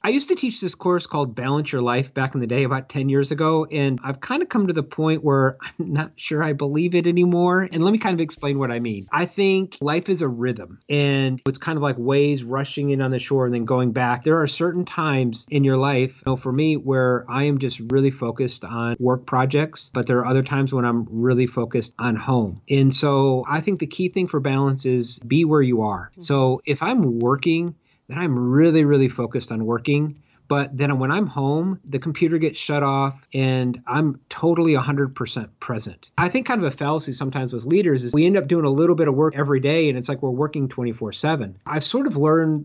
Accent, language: American, English